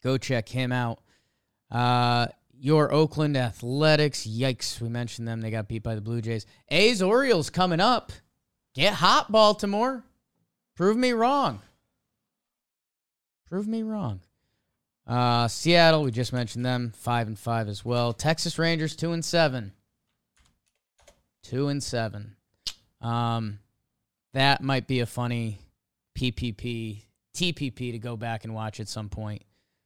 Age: 20-39